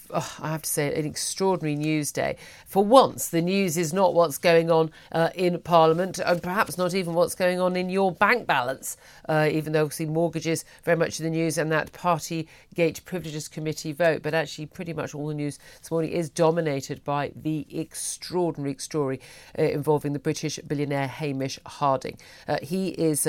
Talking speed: 185 wpm